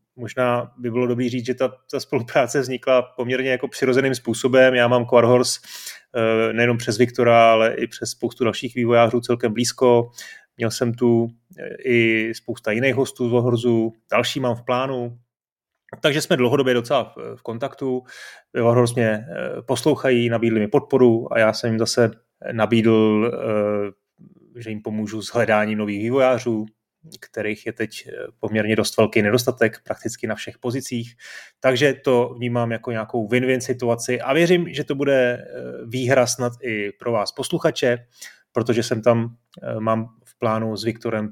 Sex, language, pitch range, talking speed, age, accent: male, Czech, 110-125 Hz, 150 wpm, 30-49, native